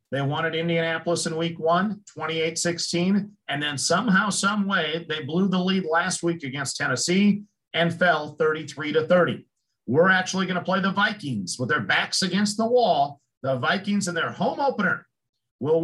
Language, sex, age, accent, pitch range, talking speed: English, male, 50-69, American, 155-185 Hz, 165 wpm